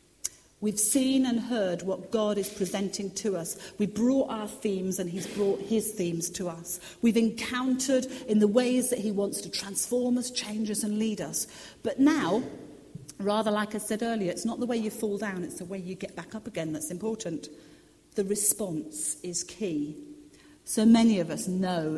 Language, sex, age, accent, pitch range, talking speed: English, female, 40-59, British, 160-210 Hz, 190 wpm